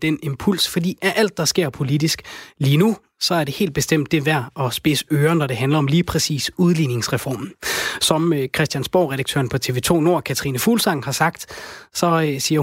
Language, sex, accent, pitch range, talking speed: Danish, male, native, 140-180 Hz, 185 wpm